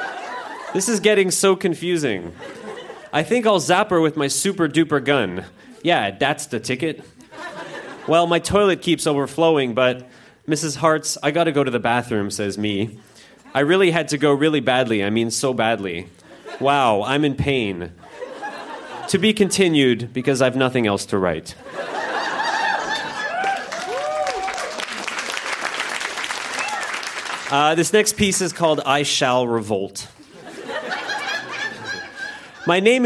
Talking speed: 125 wpm